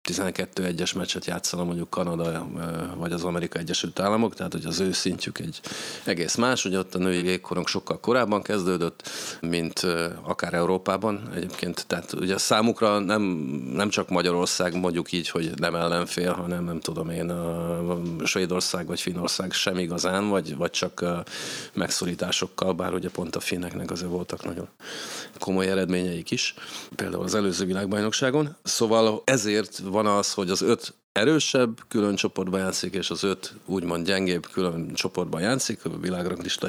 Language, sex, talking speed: Hungarian, male, 155 wpm